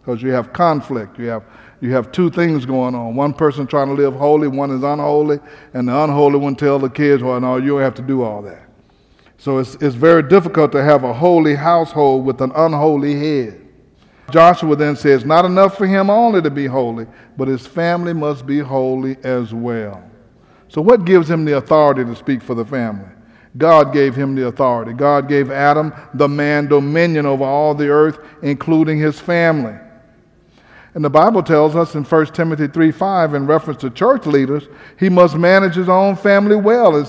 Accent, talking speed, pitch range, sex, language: American, 195 wpm, 140-175 Hz, male, English